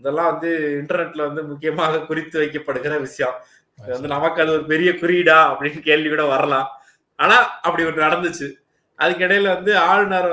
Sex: male